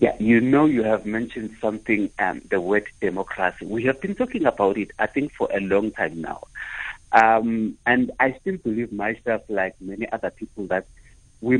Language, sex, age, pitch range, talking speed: English, male, 60-79, 115-150 Hz, 185 wpm